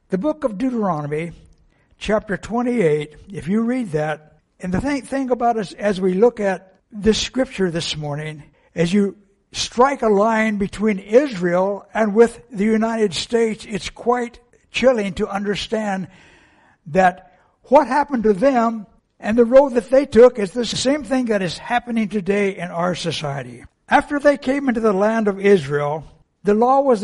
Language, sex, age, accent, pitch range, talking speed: English, male, 60-79, American, 185-245 Hz, 160 wpm